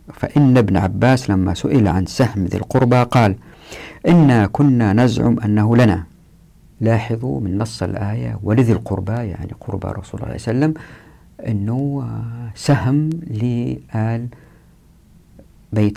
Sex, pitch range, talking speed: female, 100-130 Hz, 125 wpm